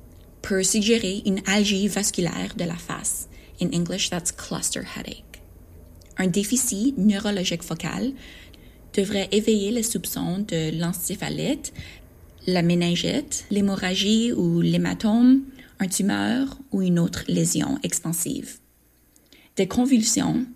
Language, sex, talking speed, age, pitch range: French, female, 110 wpm, 20-39, 170-240 Hz